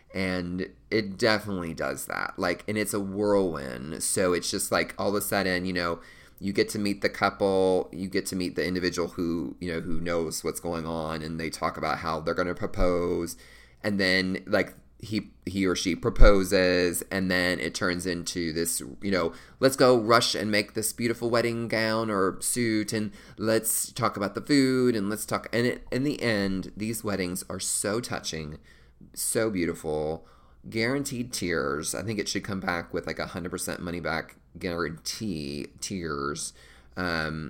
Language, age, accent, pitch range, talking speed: English, 30-49, American, 85-110 Hz, 180 wpm